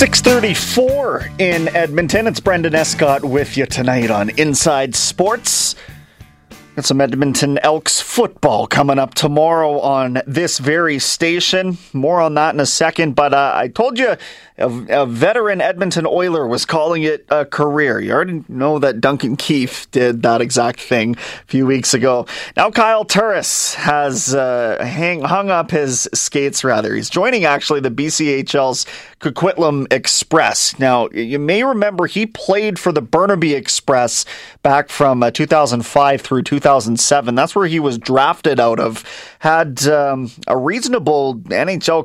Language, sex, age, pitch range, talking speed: English, male, 30-49, 125-165 Hz, 145 wpm